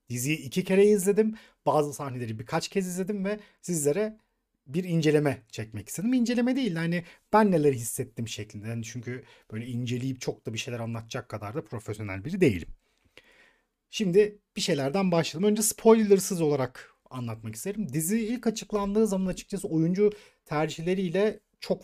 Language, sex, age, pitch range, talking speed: Turkish, male, 40-59, 140-200 Hz, 145 wpm